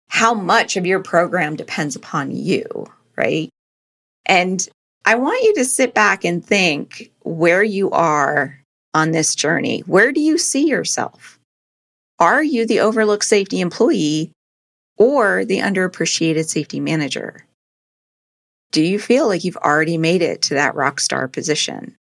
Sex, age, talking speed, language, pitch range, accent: female, 40-59, 140 wpm, English, 160-215 Hz, American